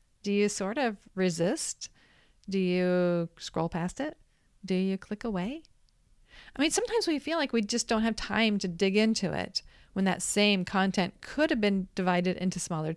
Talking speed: 180 wpm